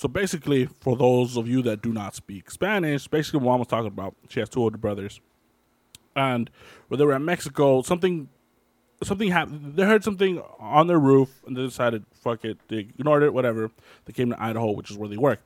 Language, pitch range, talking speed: English, 110-140 Hz, 215 wpm